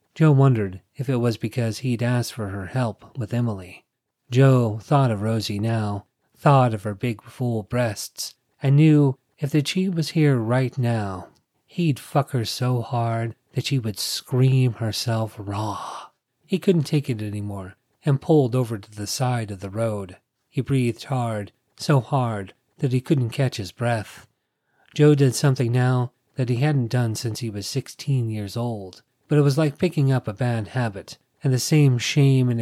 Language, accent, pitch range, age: English, American, 110-135 Hz, 40-59